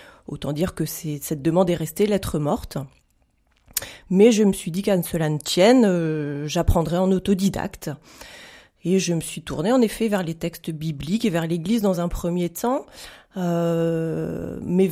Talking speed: 175 wpm